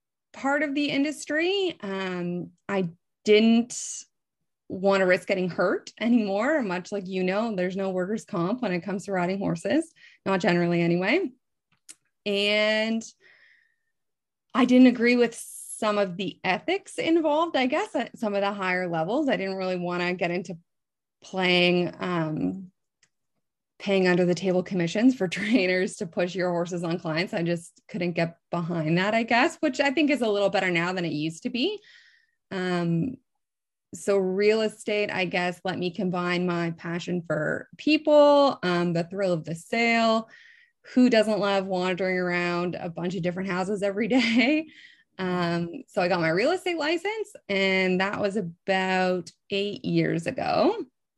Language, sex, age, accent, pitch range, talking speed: English, female, 20-39, American, 180-260 Hz, 160 wpm